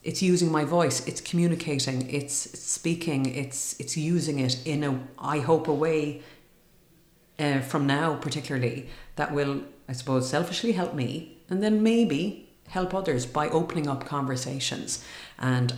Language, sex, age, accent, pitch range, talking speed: English, female, 40-59, Irish, 130-160 Hz, 150 wpm